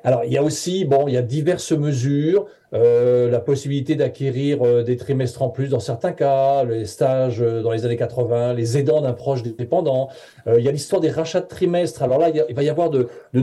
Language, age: French, 40-59